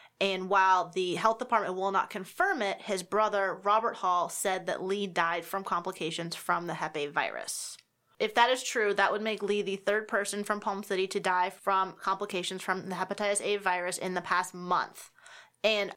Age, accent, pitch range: 20-39, American, 190-215 Hz